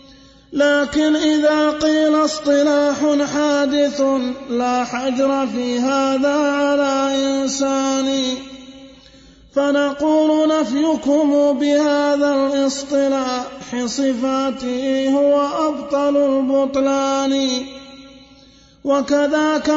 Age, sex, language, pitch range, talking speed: 30-49, male, Arabic, 270-290 Hz, 60 wpm